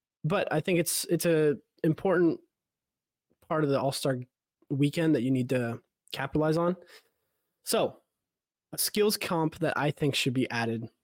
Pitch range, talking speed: 130-165 Hz, 160 wpm